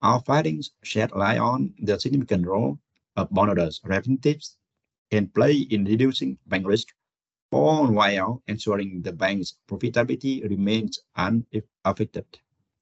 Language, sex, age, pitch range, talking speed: French, male, 60-79, 100-130 Hz, 115 wpm